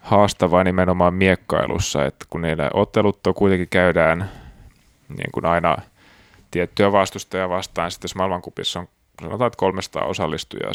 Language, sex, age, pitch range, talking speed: Finnish, male, 30-49, 85-95 Hz, 125 wpm